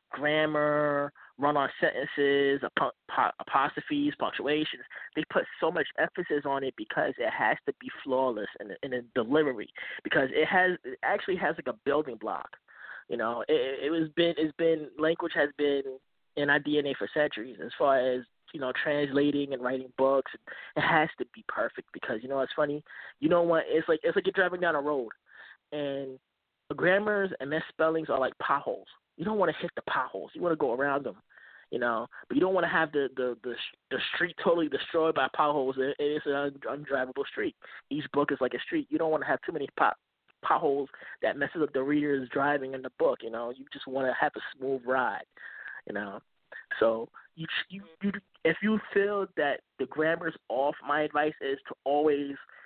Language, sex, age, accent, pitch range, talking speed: English, male, 20-39, American, 135-160 Hz, 200 wpm